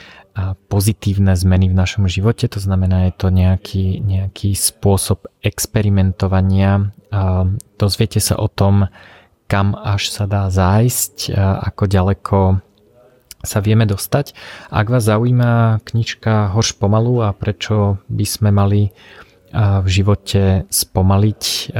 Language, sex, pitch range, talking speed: Slovak, male, 95-105 Hz, 115 wpm